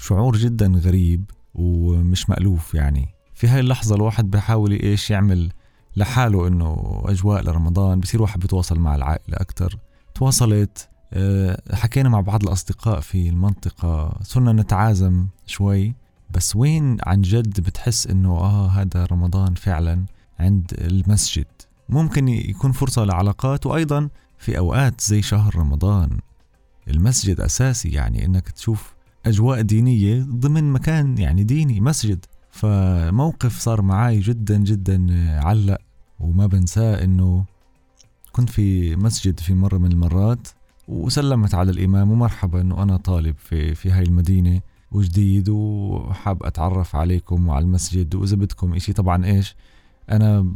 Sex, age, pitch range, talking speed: male, 20-39, 90-110 Hz, 125 wpm